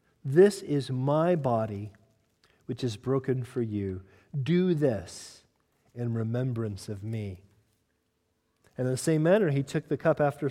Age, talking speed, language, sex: 40-59, 145 wpm, English, male